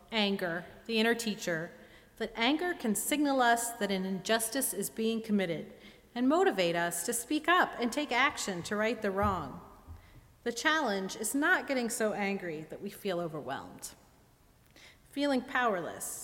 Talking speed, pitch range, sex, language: 150 wpm, 180-240 Hz, female, English